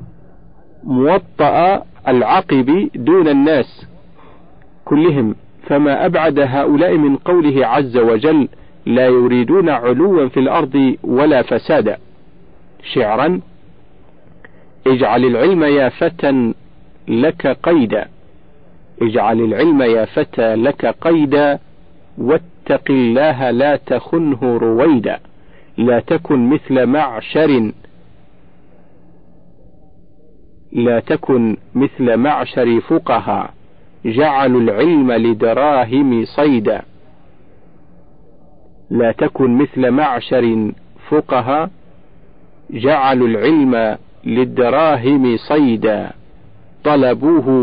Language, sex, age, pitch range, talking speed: Arabic, male, 50-69, 120-150 Hz, 75 wpm